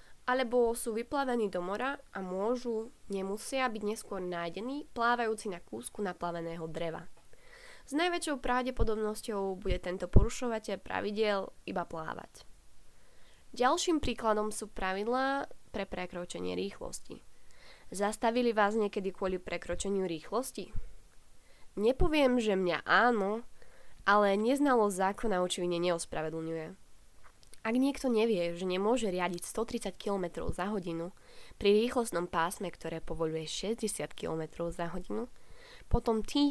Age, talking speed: 20-39, 110 wpm